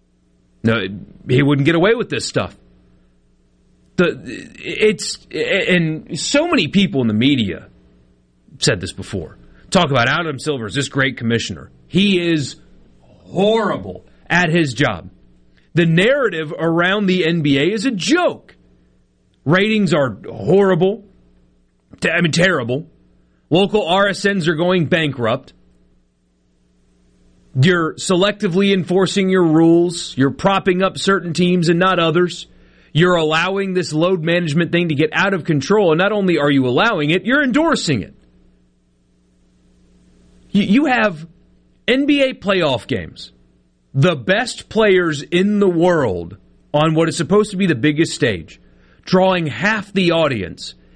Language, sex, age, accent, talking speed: English, male, 30-49, American, 130 wpm